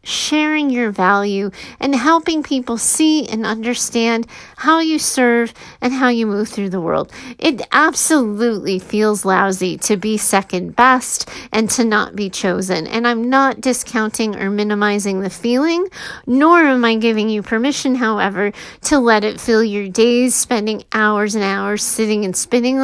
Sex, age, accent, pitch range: female, 30-49, American, 210-270 Hz